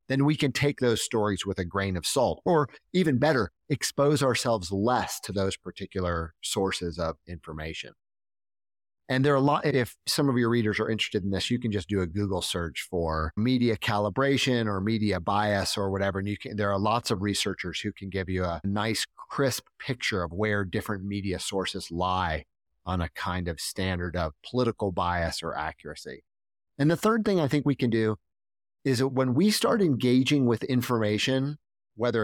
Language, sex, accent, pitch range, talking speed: English, male, American, 95-130 Hz, 185 wpm